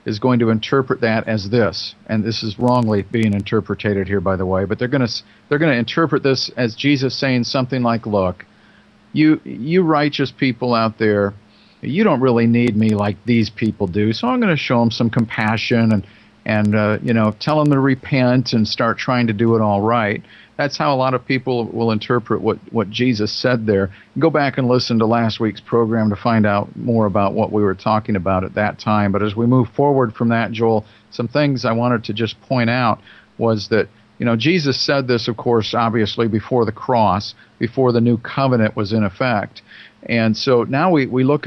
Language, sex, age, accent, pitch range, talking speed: English, male, 50-69, American, 110-130 Hz, 215 wpm